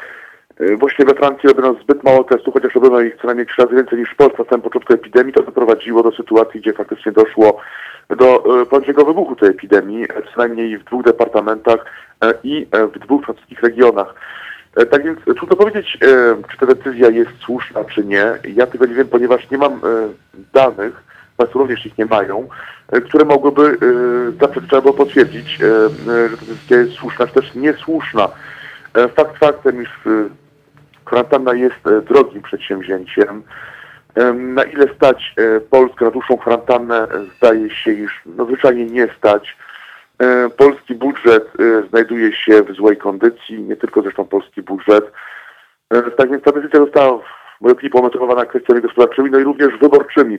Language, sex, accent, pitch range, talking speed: Polish, male, native, 115-145 Hz, 160 wpm